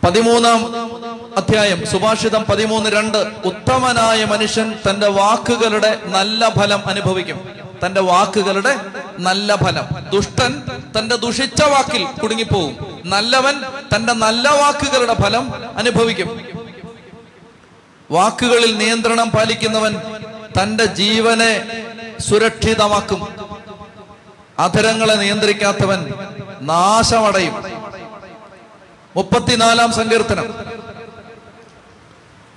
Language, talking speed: Malayalam, 70 wpm